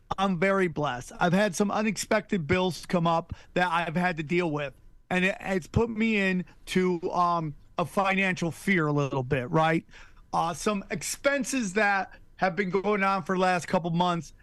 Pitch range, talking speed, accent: 150-180 Hz, 185 wpm, American